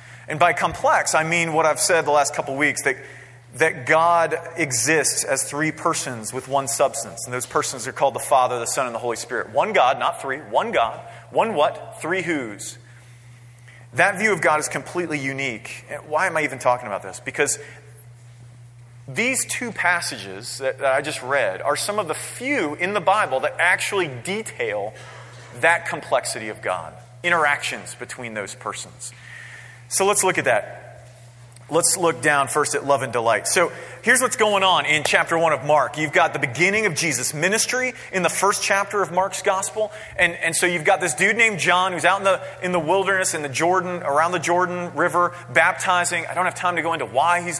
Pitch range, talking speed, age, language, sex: 130-180 Hz, 200 wpm, 30-49, English, male